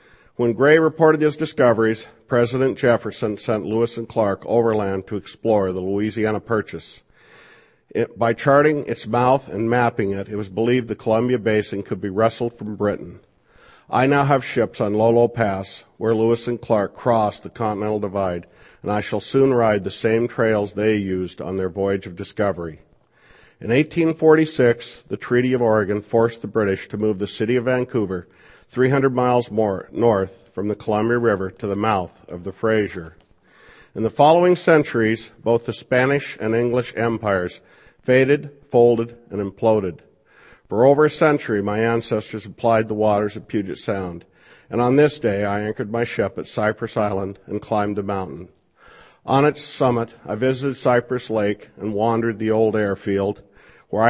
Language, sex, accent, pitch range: English, male, American, 105-120 Hz